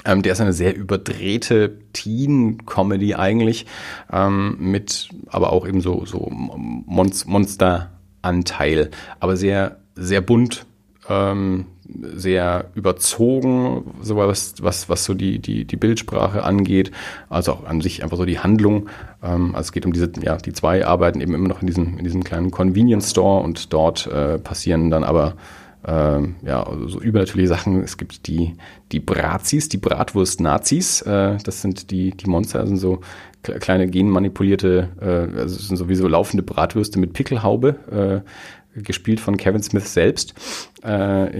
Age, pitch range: 40-59, 90-100 Hz